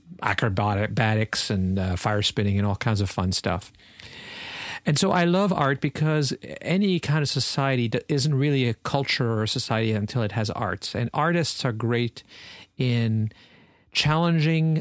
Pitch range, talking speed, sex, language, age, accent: 105-135 Hz, 160 wpm, male, English, 50-69, American